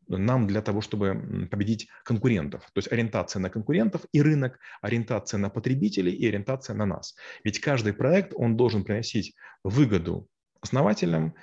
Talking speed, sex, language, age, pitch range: 145 wpm, male, Russian, 30-49, 110-135 Hz